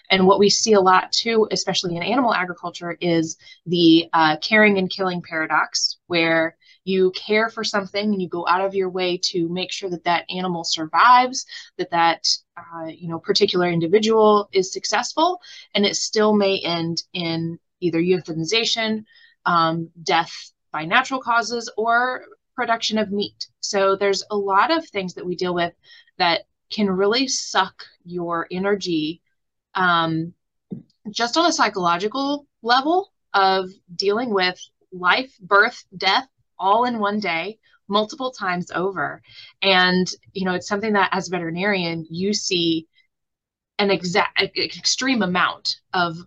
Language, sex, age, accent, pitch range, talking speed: English, female, 20-39, American, 170-215 Hz, 145 wpm